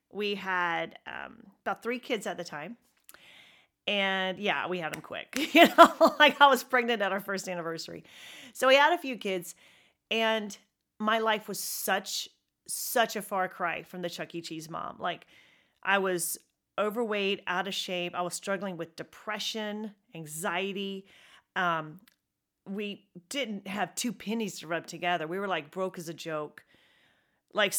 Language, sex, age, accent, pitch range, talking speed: English, female, 40-59, American, 175-215 Hz, 165 wpm